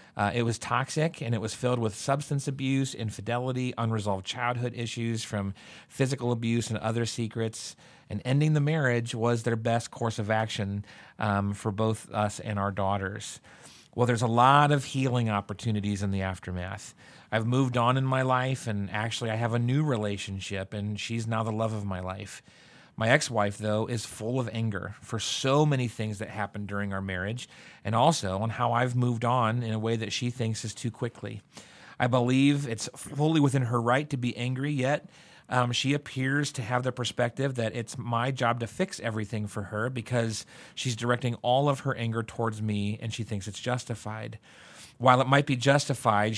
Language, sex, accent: English, male, American